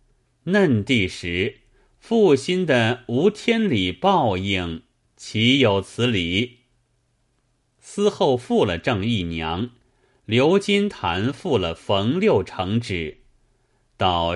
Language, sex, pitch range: Chinese, male, 95-130 Hz